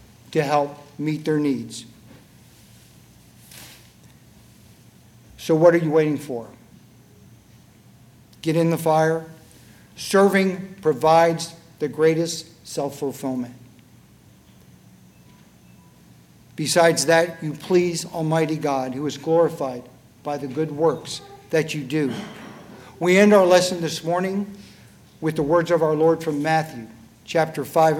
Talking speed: 110 wpm